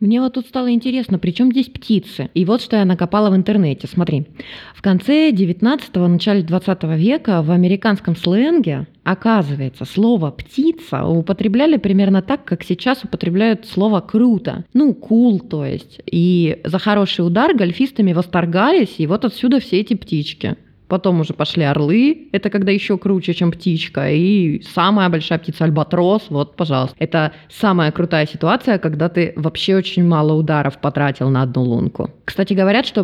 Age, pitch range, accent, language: 20-39, 165-215 Hz, native, Russian